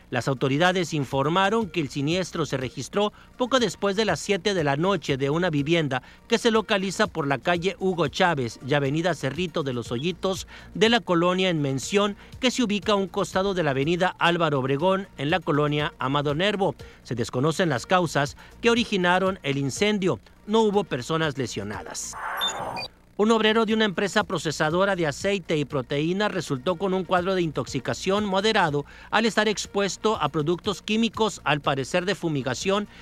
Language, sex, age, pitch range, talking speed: Spanish, male, 50-69, 145-200 Hz, 170 wpm